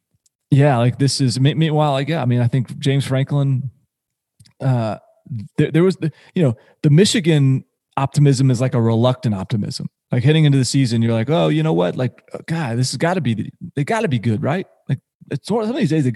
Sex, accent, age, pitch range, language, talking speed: male, American, 30-49, 115-150 Hz, English, 235 wpm